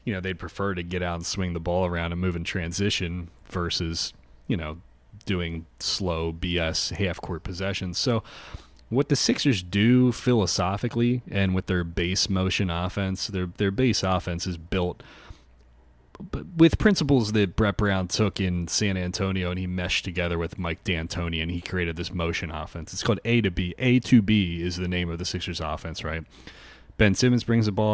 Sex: male